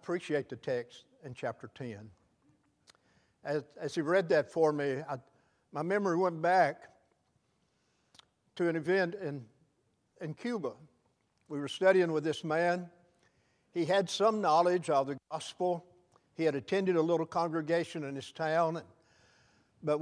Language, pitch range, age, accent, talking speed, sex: English, 155-195 Hz, 60-79, American, 140 wpm, male